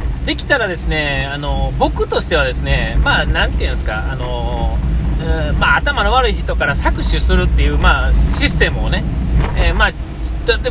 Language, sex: Japanese, male